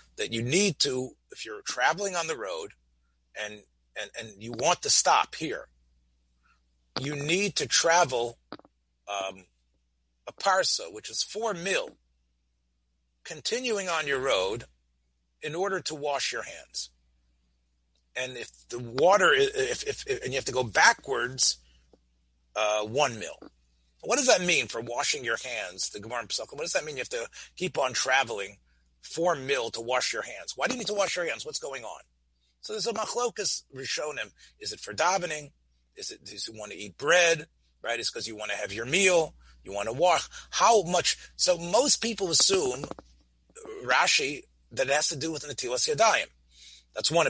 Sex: male